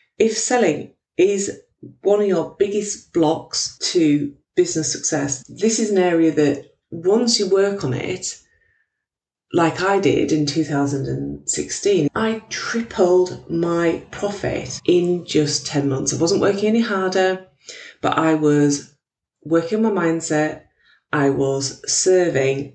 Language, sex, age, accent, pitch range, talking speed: English, female, 30-49, British, 140-195 Hz, 130 wpm